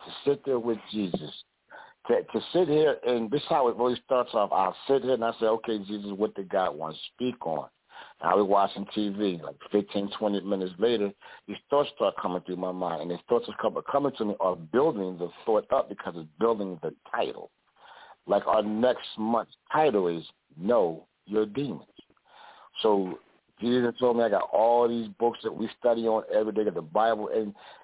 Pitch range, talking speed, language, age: 100-125 Hz, 205 wpm, English, 60-79